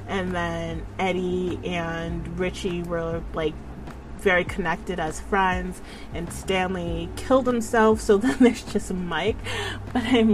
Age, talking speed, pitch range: 30-49, 130 wpm, 170-220 Hz